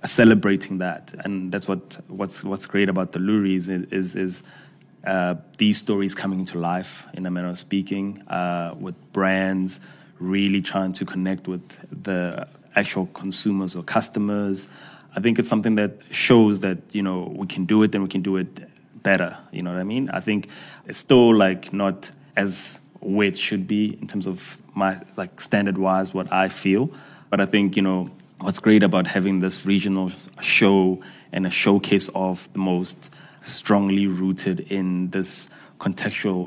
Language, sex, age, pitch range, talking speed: English, male, 20-39, 95-100 Hz, 175 wpm